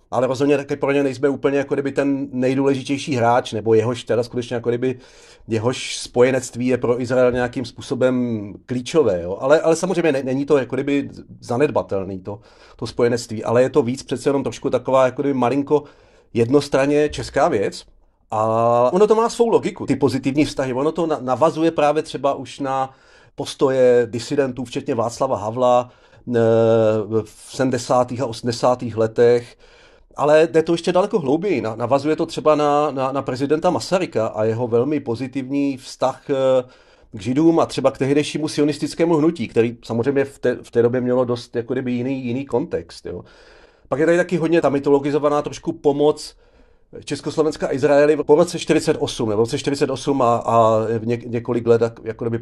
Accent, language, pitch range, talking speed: native, Czech, 120-150 Hz, 170 wpm